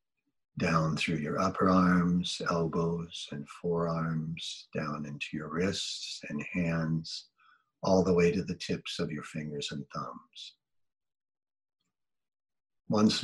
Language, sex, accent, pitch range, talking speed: English, male, American, 85-105 Hz, 120 wpm